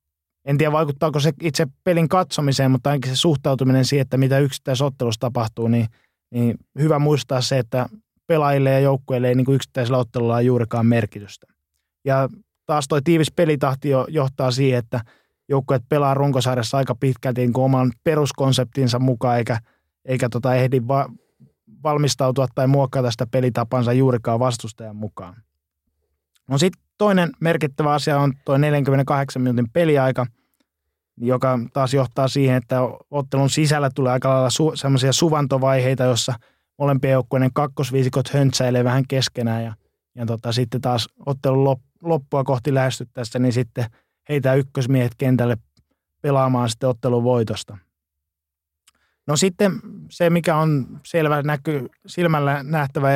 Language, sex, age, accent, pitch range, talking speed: Finnish, male, 20-39, native, 125-145 Hz, 135 wpm